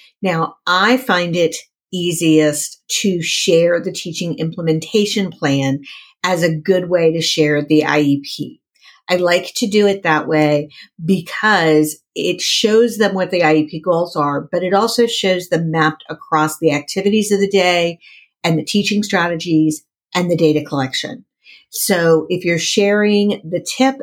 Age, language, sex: 50-69, English, female